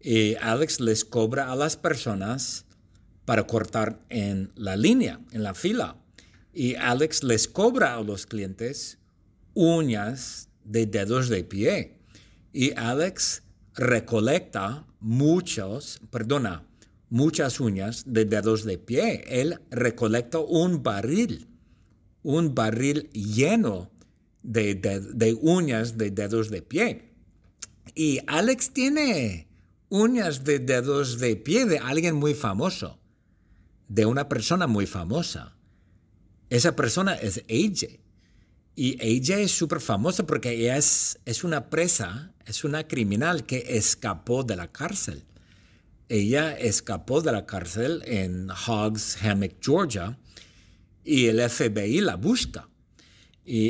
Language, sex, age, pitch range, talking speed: English, male, 50-69, 100-140 Hz, 120 wpm